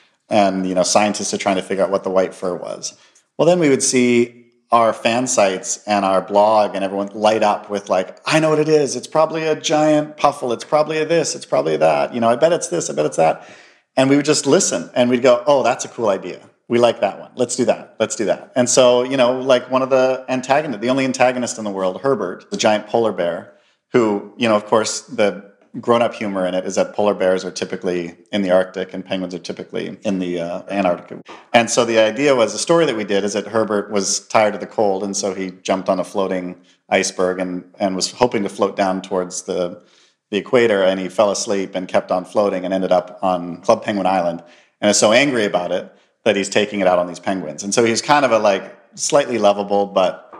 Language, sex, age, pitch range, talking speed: English, male, 40-59, 95-125 Hz, 245 wpm